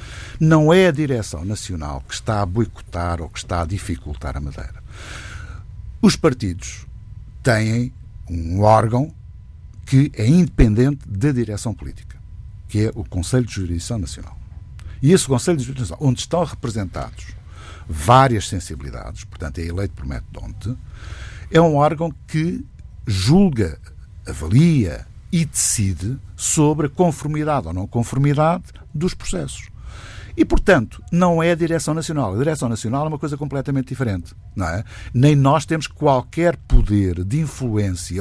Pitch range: 95-145 Hz